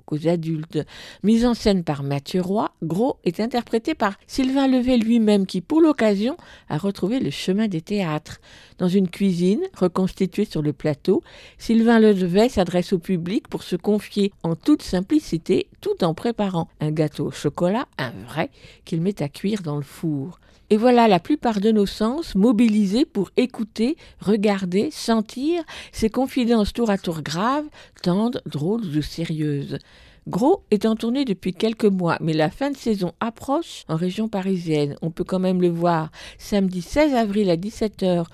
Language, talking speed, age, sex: French, 165 wpm, 50-69, female